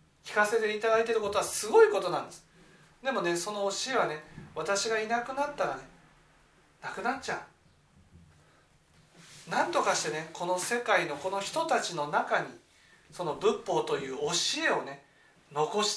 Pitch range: 175-270 Hz